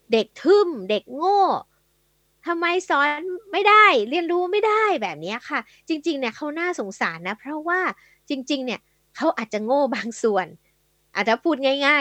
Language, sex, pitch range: Thai, female, 210-300 Hz